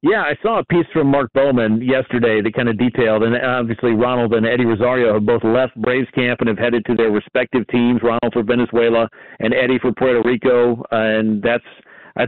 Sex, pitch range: male, 120-140 Hz